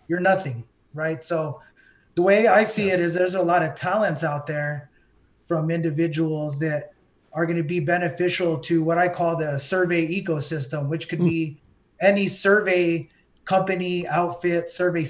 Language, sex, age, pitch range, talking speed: English, male, 30-49, 160-190 Hz, 160 wpm